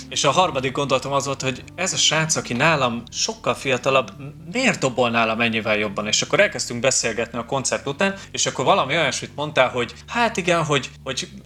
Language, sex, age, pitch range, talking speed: Hungarian, male, 30-49, 115-135 Hz, 190 wpm